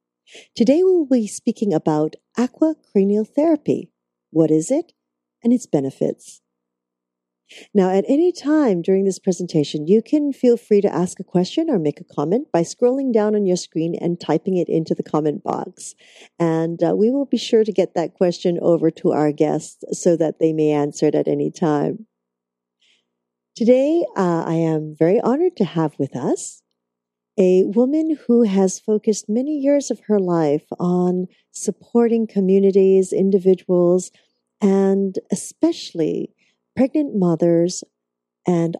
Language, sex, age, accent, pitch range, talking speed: English, female, 50-69, American, 150-220 Hz, 150 wpm